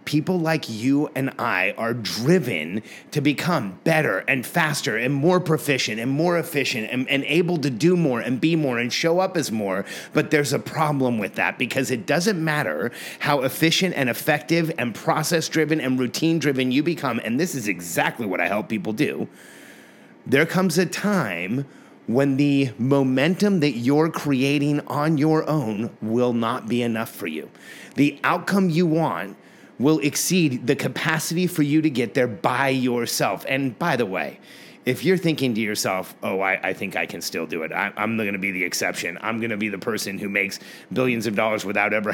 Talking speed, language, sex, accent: 190 wpm, English, male, American